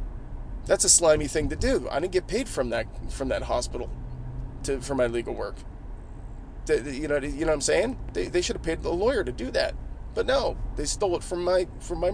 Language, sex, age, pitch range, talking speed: English, male, 30-49, 125-165 Hz, 240 wpm